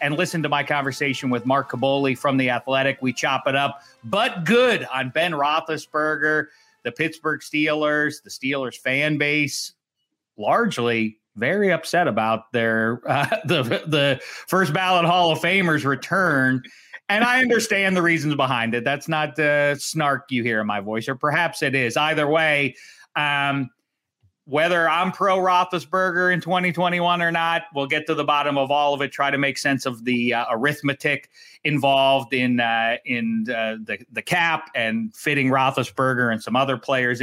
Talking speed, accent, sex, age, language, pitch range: 170 wpm, American, male, 40-59, English, 135-185 Hz